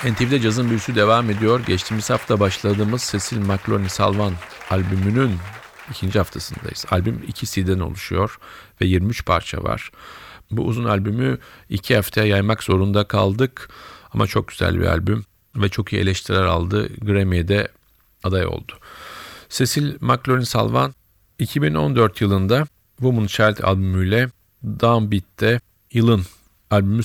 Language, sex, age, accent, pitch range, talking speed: Turkish, male, 50-69, native, 95-115 Hz, 120 wpm